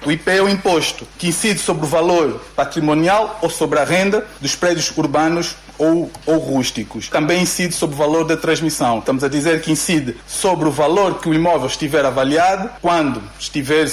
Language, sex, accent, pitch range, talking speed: Portuguese, male, Brazilian, 145-180 Hz, 185 wpm